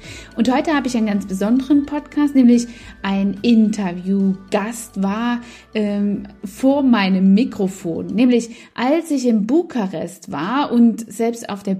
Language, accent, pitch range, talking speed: German, German, 205-265 Hz, 130 wpm